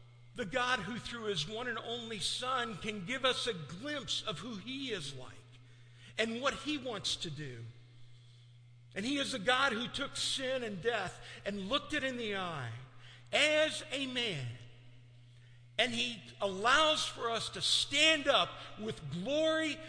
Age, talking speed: 50-69, 165 wpm